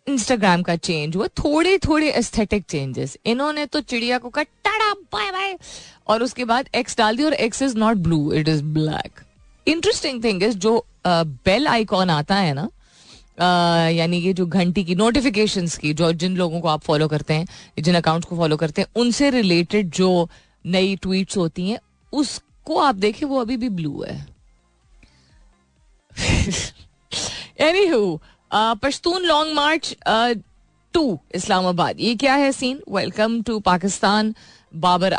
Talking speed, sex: 105 wpm, female